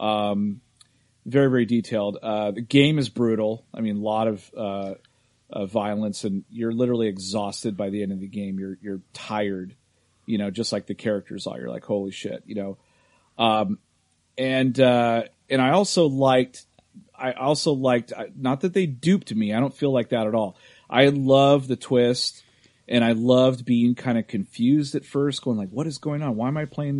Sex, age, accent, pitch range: male, 30-49, American, 110-140 Hz